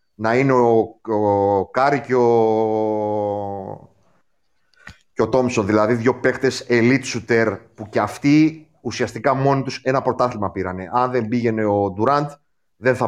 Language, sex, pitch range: Greek, male, 105-130 Hz